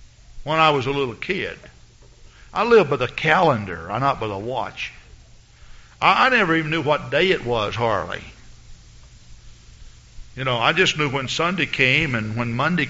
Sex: male